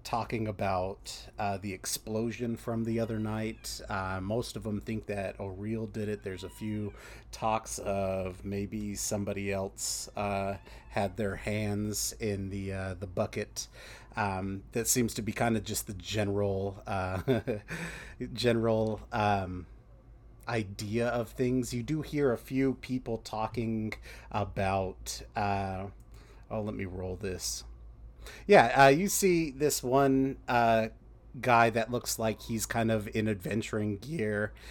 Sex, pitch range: male, 100-115 Hz